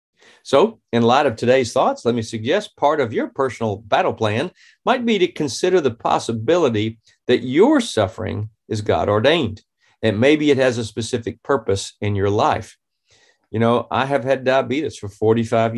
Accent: American